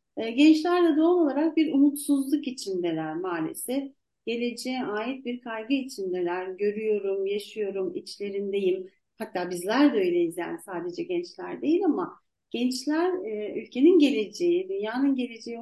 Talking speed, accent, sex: 115 wpm, native, female